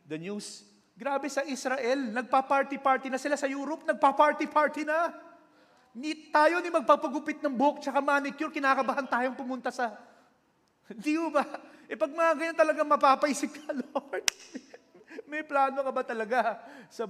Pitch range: 180-270 Hz